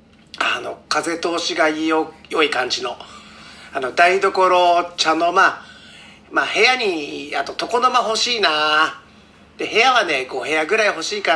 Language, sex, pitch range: Japanese, male, 155-235 Hz